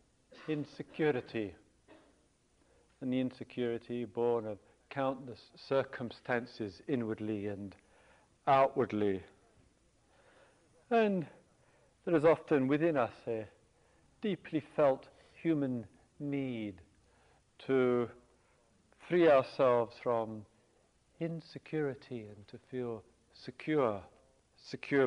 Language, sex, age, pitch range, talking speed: English, male, 50-69, 115-150 Hz, 75 wpm